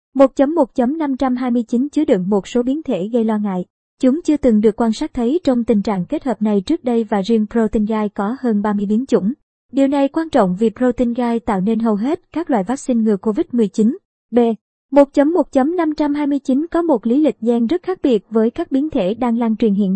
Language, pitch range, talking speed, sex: Vietnamese, 215-265 Hz, 200 wpm, male